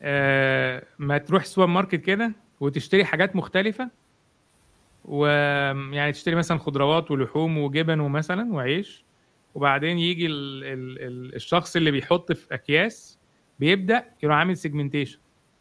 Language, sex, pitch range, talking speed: Arabic, male, 125-175 Hz, 115 wpm